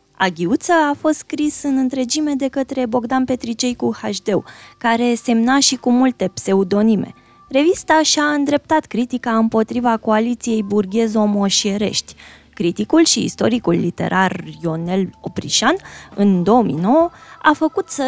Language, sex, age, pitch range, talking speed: Romanian, female, 20-39, 185-255 Hz, 115 wpm